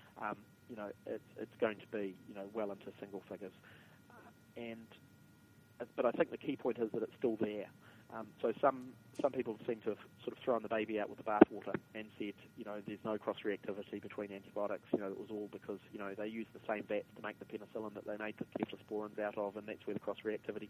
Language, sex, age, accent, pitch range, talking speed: English, male, 30-49, Australian, 100-110 Hz, 235 wpm